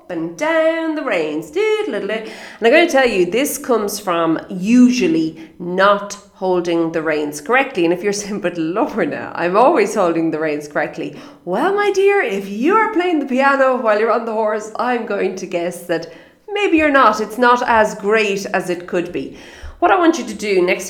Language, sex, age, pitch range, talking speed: English, female, 30-49, 175-235 Hz, 195 wpm